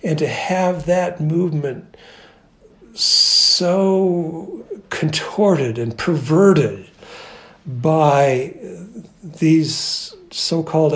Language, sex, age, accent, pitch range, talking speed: English, male, 60-79, American, 150-180 Hz, 65 wpm